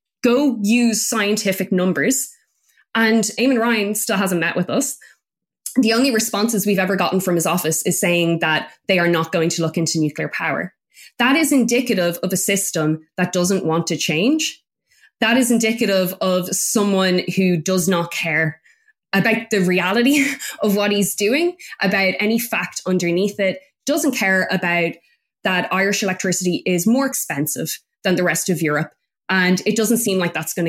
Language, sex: English, female